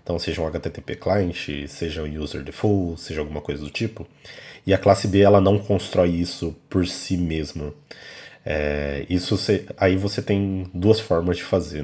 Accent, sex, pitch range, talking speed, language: Brazilian, male, 80-105 Hz, 175 wpm, Portuguese